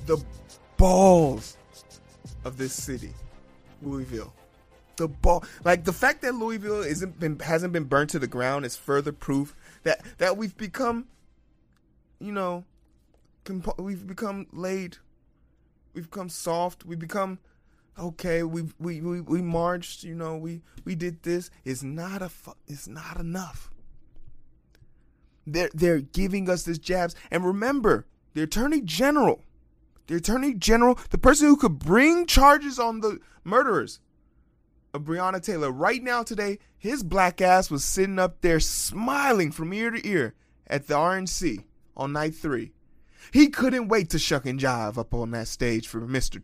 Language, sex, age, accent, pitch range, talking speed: English, male, 20-39, American, 135-205 Hz, 155 wpm